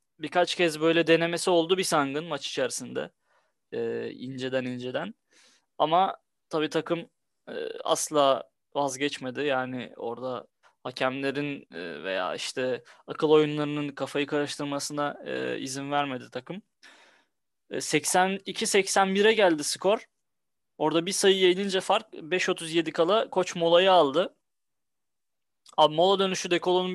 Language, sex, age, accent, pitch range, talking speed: Turkish, male, 20-39, native, 150-190 Hz, 110 wpm